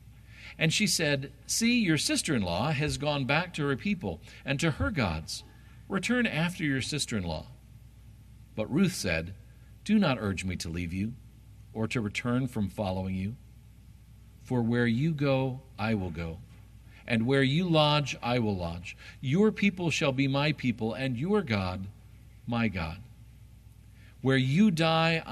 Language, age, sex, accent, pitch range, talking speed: English, 50-69, male, American, 105-145 Hz, 150 wpm